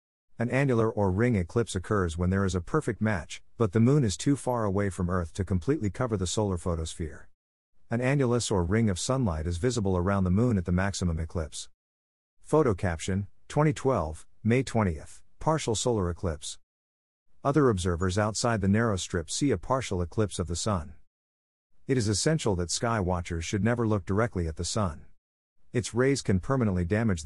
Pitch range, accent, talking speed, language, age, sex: 85-115 Hz, American, 180 wpm, English, 50-69, male